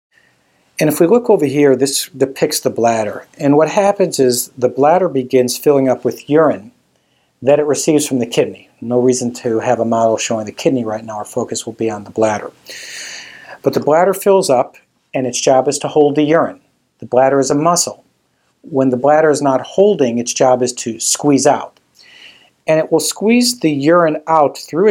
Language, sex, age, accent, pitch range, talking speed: English, male, 50-69, American, 125-160 Hz, 200 wpm